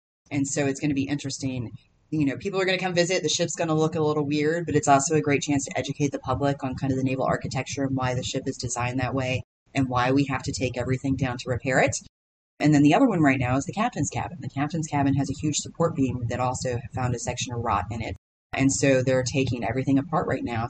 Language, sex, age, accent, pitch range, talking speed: English, female, 30-49, American, 125-145 Hz, 275 wpm